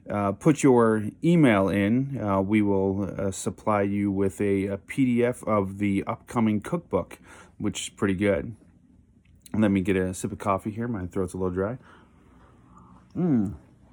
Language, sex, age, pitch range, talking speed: English, male, 30-49, 95-110 Hz, 160 wpm